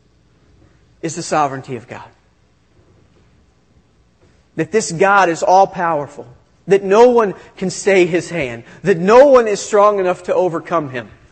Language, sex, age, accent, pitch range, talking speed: English, male, 40-59, American, 170-215 Hz, 140 wpm